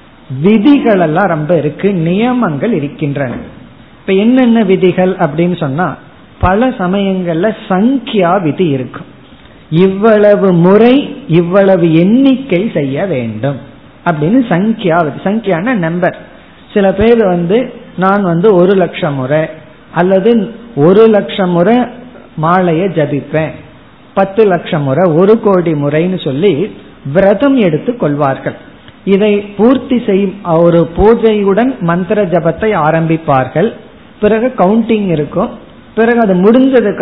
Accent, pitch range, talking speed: native, 160-215 Hz, 105 wpm